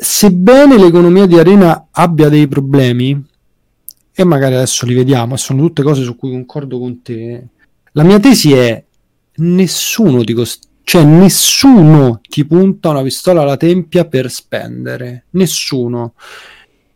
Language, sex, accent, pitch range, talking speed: Italian, male, native, 135-185 Hz, 125 wpm